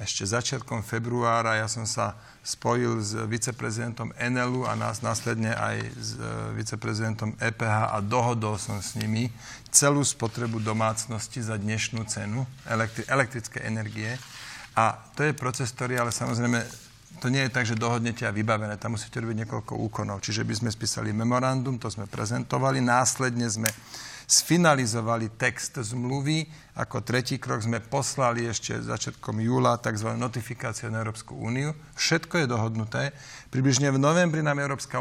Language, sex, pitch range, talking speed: Slovak, male, 115-135 Hz, 145 wpm